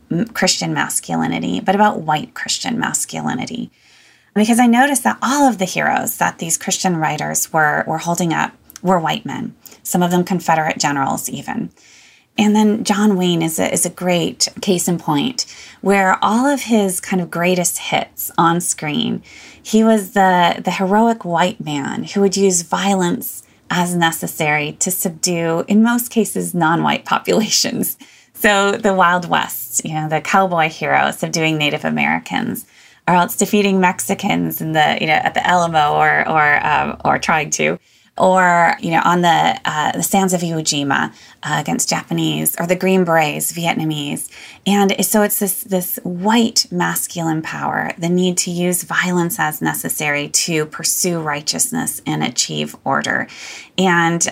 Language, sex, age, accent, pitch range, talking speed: English, female, 20-39, American, 165-200 Hz, 160 wpm